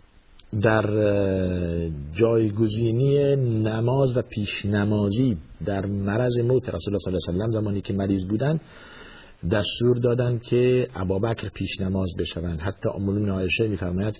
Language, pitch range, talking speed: Persian, 95-115 Hz, 120 wpm